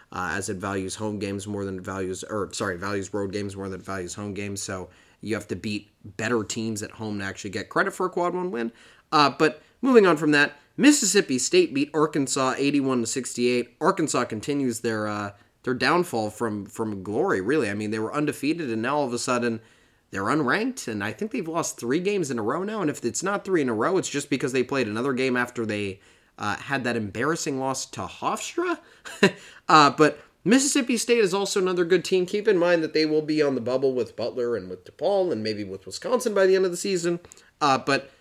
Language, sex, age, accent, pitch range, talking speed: English, male, 20-39, American, 115-175 Hz, 235 wpm